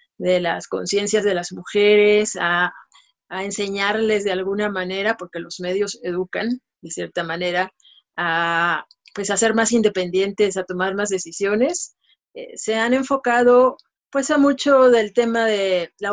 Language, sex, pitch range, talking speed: Spanish, female, 175-225 Hz, 140 wpm